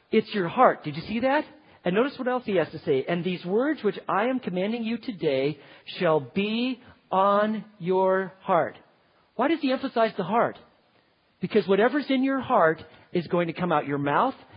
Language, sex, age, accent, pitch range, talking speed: English, male, 40-59, American, 155-225 Hz, 195 wpm